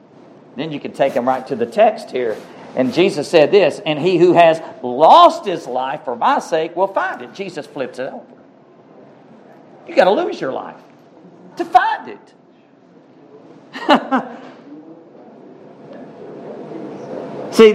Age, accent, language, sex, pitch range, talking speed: 50-69, American, English, male, 180-275 Hz, 140 wpm